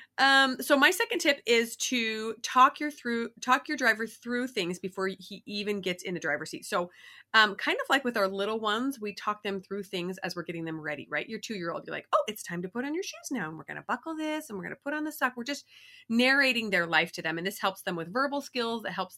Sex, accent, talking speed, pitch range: female, American, 275 wpm, 175-250 Hz